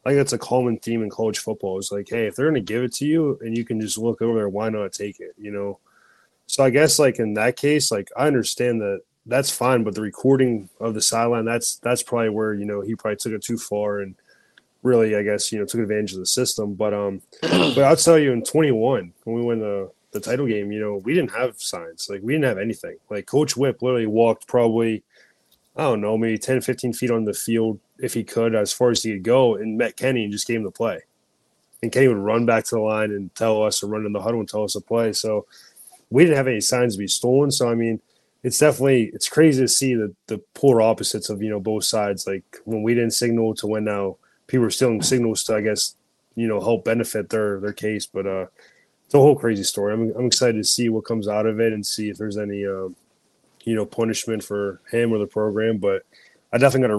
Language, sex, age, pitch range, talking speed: English, male, 20-39, 105-120 Hz, 255 wpm